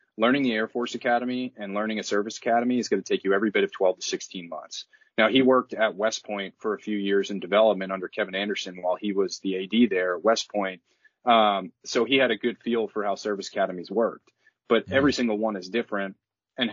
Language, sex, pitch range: English, male, 100-120 Hz